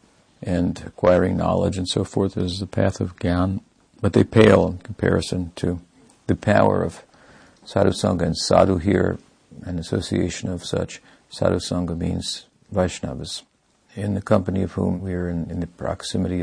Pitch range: 90-100 Hz